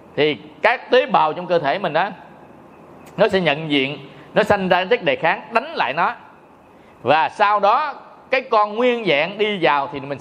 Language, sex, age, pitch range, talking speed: Vietnamese, male, 20-39, 150-205 Hz, 195 wpm